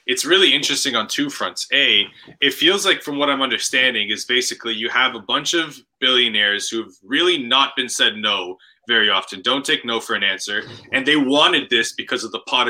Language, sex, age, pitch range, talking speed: English, male, 20-39, 125-180 Hz, 210 wpm